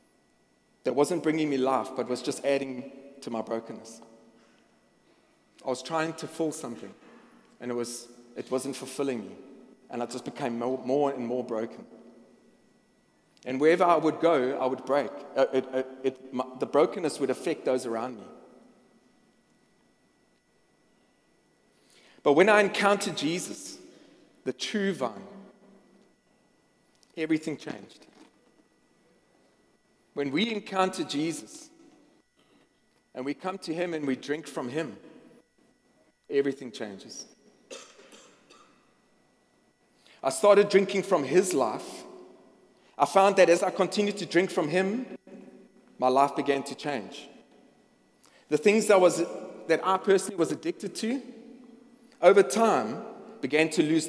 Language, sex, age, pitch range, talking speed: English, male, 40-59, 130-200 Hz, 125 wpm